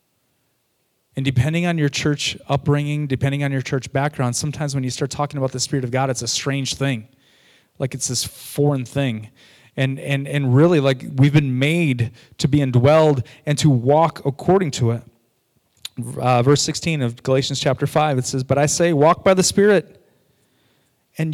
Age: 30-49